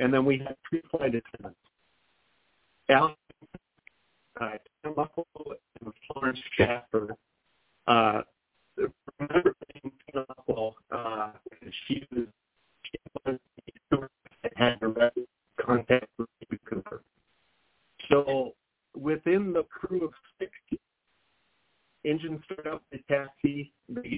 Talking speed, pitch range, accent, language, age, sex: 100 wpm, 120-155 Hz, American, English, 40-59, male